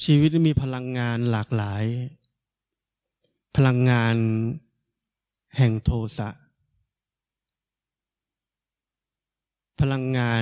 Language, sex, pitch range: Thai, male, 110-135 Hz